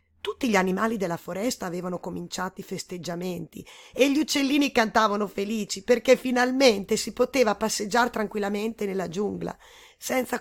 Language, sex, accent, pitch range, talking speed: Italian, female, native, 185-265 Hz, 135 wpm